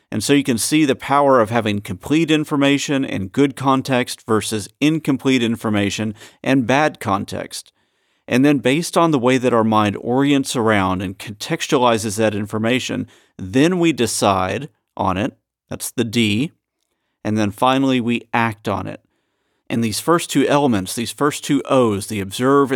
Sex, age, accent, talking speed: male, 40-59, American, 160 wpm